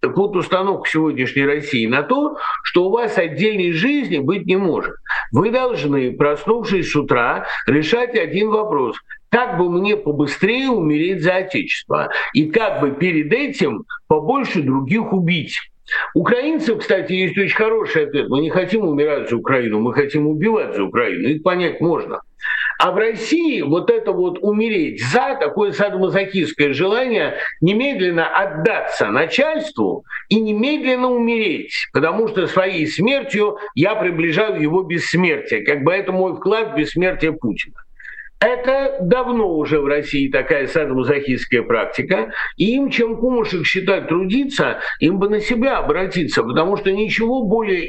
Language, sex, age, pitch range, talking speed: Russian, male, 50-69, 160-235 Hz, 140 wpm